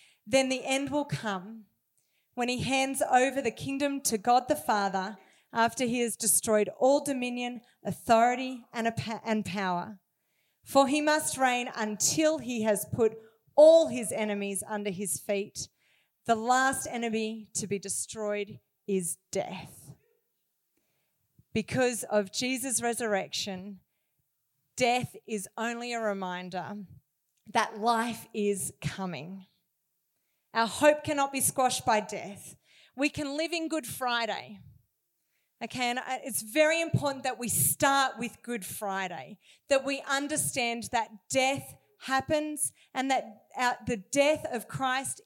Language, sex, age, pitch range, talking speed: English, female, 40-59, 210-270 Hz, 125 wpm